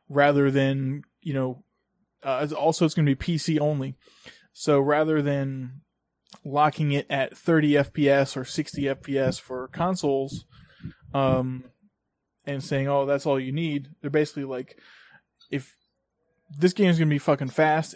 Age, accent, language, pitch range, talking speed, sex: 20-39, American, English, 130-155 Hz, 150 wpm, male